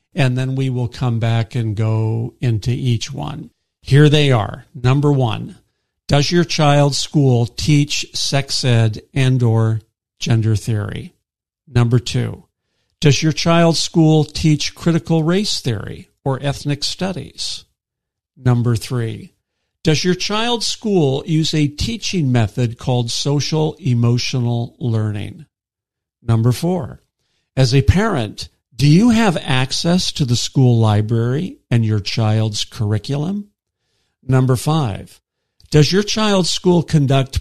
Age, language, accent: 50-69, English, American